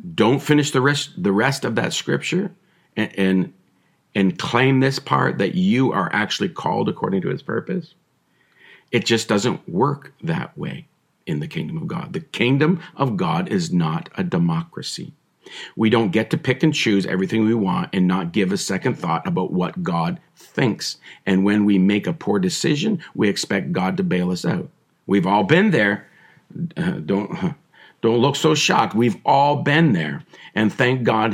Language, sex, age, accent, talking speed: English, male, 50-69, American, 180 wpm